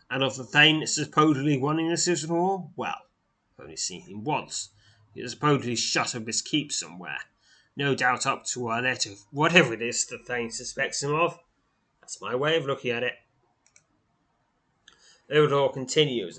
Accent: British